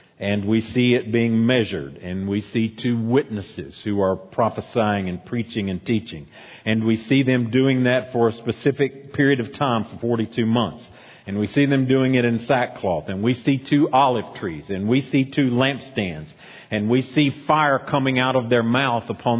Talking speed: 190 wpm